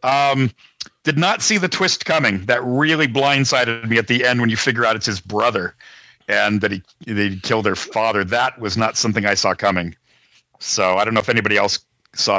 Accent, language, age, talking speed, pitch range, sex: American, English, 50-69, 210 wpm, 110-140 Hz, male